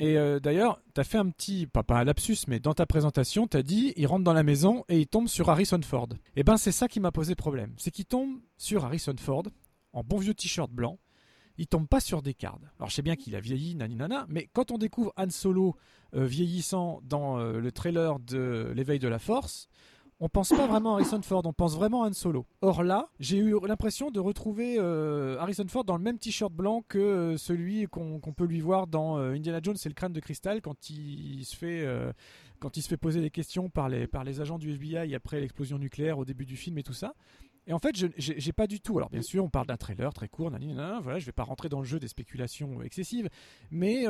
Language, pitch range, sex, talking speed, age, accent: French, 140-200 Hz, male, 260 wpm, 40-59, French